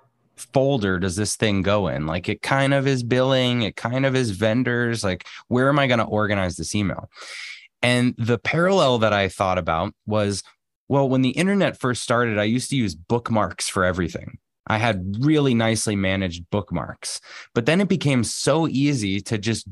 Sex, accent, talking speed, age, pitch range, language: male, American, 185 wpm, 20-39, 95-130 Hz, English